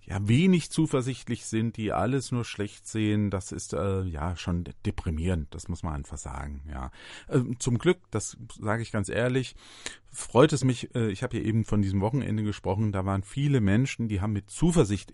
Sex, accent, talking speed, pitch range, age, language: male, German, 195 wpm, 95-120 Hz, 40-59, German